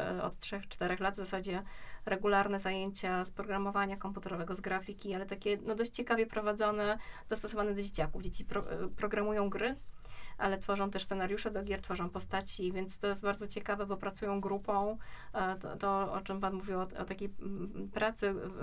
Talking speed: 160 wpm